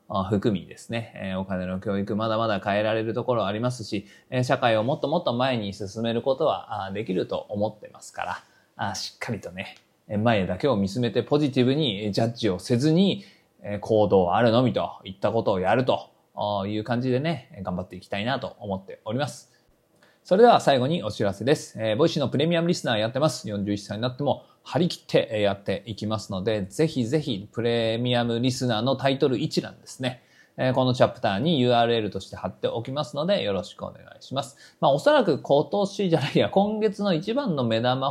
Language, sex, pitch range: Japanese, male, 105-150 Hz